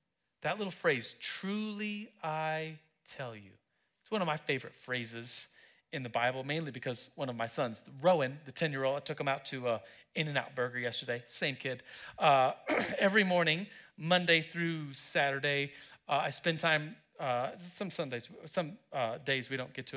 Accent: American